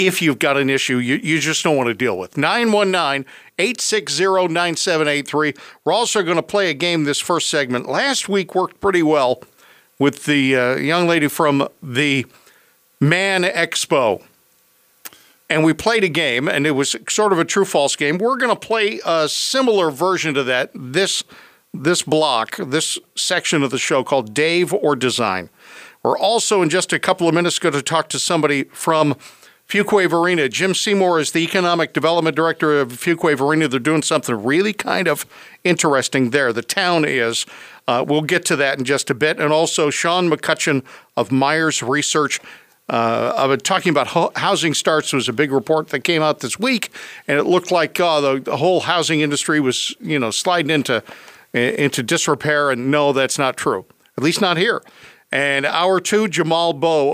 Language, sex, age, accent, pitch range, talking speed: English, male, 50-69, American, 140-180 Hz, 185 wpm